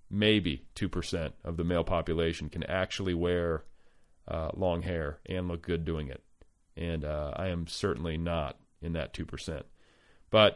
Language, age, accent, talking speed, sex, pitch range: English, 40-59, American, 165 wpm, male, 85-105 Hz